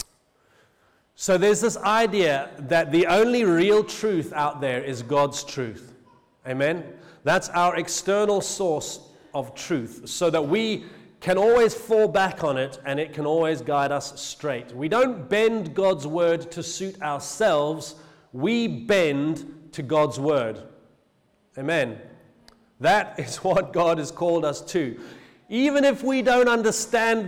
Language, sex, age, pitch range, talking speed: English, male, 40-59, 150-210 Hz, 140 wpm